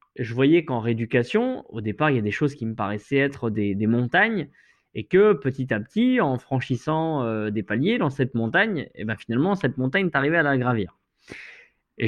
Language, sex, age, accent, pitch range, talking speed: French, male, 20-39, French, 125-170 Hz, 205 wpm